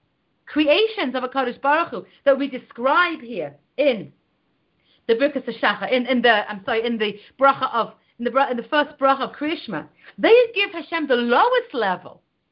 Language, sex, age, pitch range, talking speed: English, female, 40-59, 245-340 Hz, 175 wpm